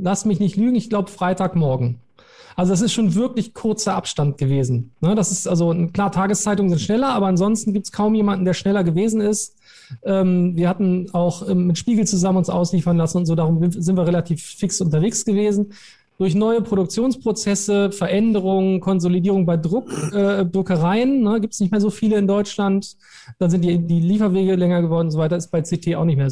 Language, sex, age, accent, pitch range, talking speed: German, male, 40-59, German, 170-205 Hz, 185 wpm